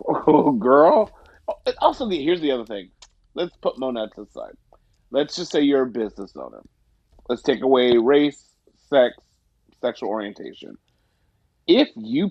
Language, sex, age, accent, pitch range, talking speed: English, male, 30-49, American, 120-205 Hz, 130 wpm